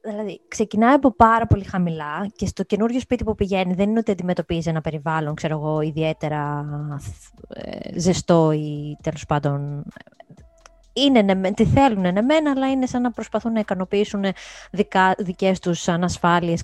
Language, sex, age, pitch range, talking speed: Greek, female, 20-39, 170-225 Hz, 155 wpm